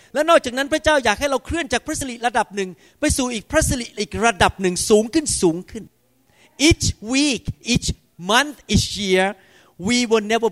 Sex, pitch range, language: male, 190-245 Hz, Thai